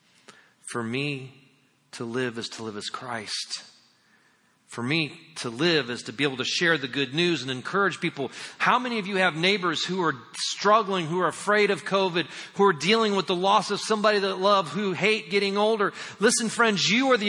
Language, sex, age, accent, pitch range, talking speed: English, male, 40-59, American, 165-255 Hz, 200 wpm